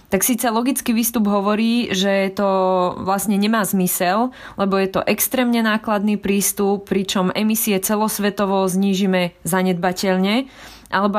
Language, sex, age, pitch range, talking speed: Slovak, female, 20-39, 190-210 Hz, 120 wpm